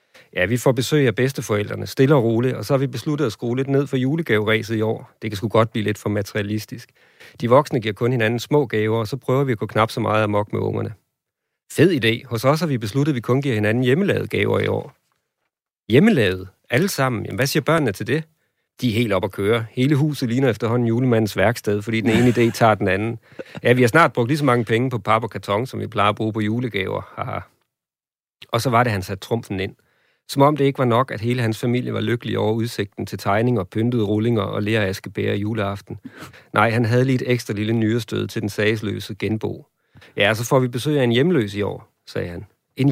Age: 40-59